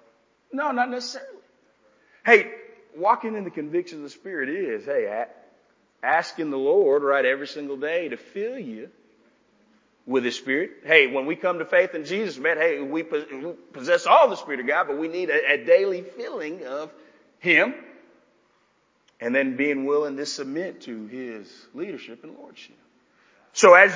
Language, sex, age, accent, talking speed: English, male, 40-59, American, 160 wpm